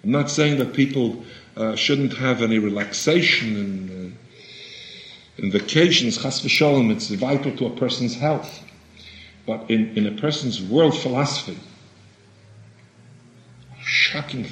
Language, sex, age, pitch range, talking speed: English, male, 50-69, 105-145 Hz, 115 wpm